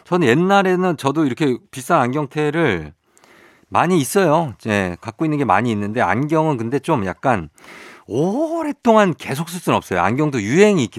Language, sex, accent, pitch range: Korean, male, native, 110-170 Hz